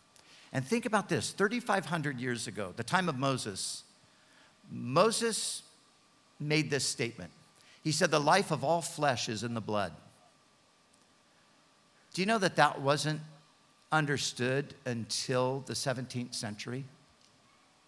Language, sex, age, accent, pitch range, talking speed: English, male, 50-69, American, 125-165 Hz, 125 wpm